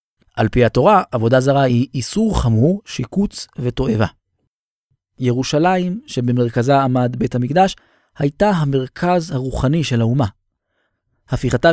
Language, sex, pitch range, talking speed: Hebrew, male, 115-165 Hz, 105 wpm